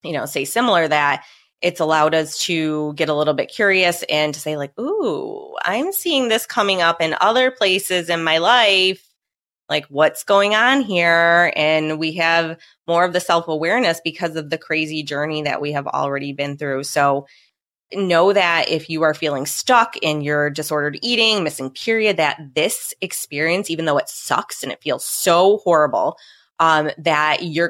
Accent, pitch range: American, 155-200 Hz